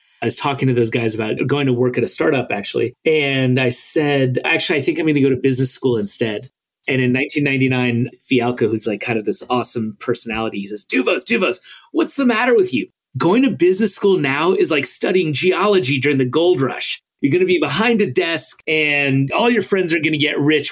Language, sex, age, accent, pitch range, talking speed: English, male, 30-49, American, 115-145 Hz, 225 wpm